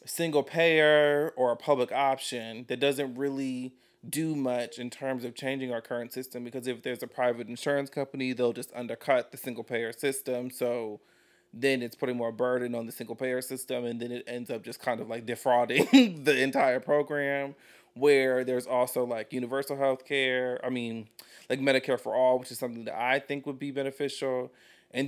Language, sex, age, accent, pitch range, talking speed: English, male, 30-49, American, 125-155 Hz, 180 wpm